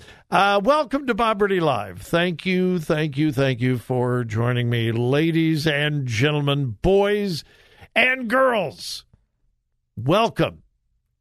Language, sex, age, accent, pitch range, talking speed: English, male, 60-79, American, 110-160 Hz, 110 wpm